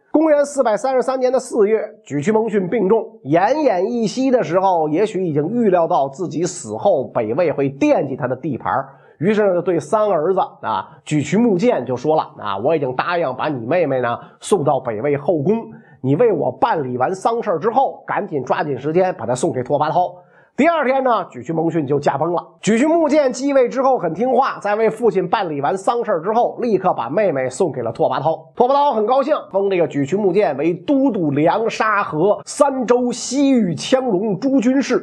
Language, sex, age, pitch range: Chinese, male, 30-49, 175-270 Hz